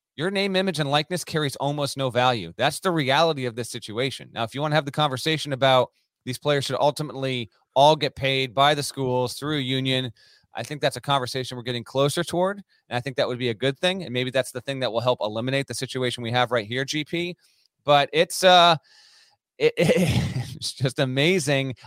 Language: English